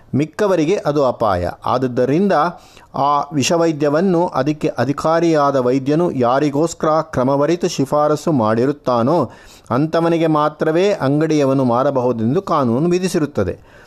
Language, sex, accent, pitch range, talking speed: Kannada, male, native, 125-170 Hz, 80 wpm